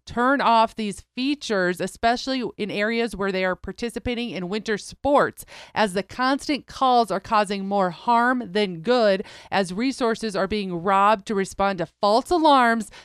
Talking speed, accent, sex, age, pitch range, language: 155 wpm, American, female, 30-49, 210-270 Hz, English